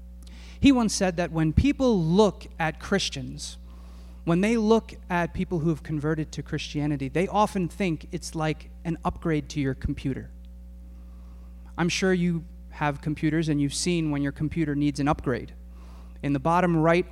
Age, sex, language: 30-49, male, English